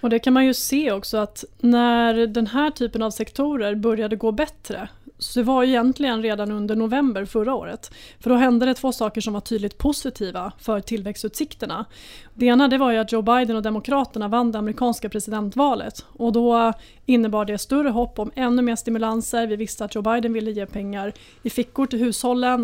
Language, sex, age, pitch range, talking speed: Swedish, female, 30-49, 215-245 Hz, 195 wpm